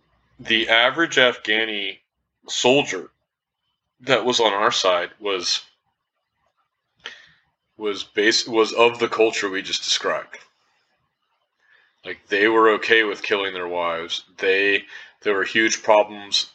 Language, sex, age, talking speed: English, male, 30-49, 115 wpm